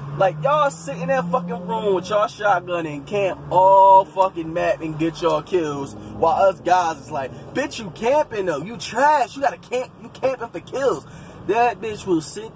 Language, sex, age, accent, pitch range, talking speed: English, male, 20-39, American, 165-245 Hz, 195 wpm